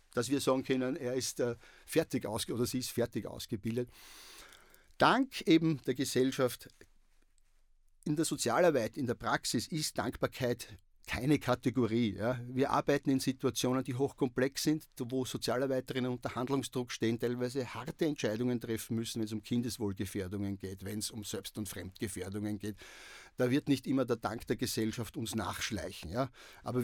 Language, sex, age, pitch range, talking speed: German, male, 50-69, 115-145 Hz, 155 wpm